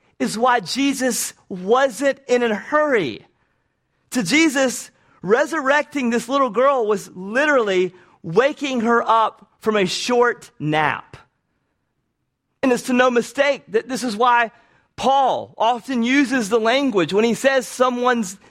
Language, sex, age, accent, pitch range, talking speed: English, male, 30-49, American, 190-255 Hz, 130 wpm